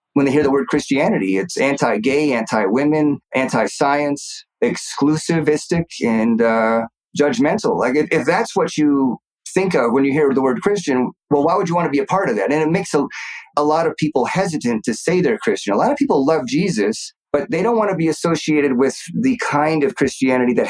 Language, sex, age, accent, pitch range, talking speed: English, male, 30-49, American, 120-155 Hz, 205 wpm